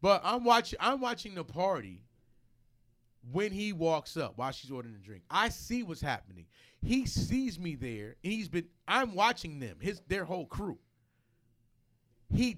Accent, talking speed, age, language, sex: American, 165 wpm, 30-49, English, male